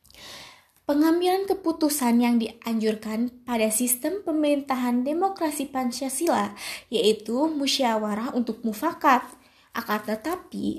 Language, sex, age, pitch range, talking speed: Indonesian, female, 20-39, 235-310 Hz, 85 wpm